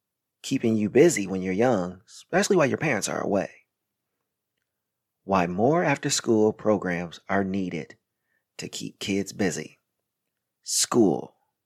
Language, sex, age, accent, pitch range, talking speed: English, male, 40-59, American, 105-155 Hz, 120 wpm